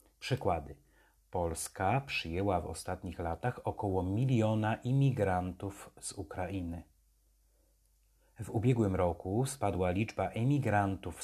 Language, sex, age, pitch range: Polish, male, 30-49, 85-110 Hz